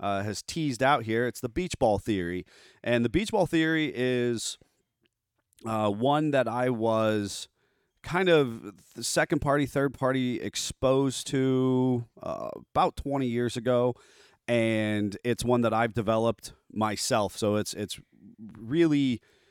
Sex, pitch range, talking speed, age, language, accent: male, 100-125 Hz, 140 wpm, 30-49, English, American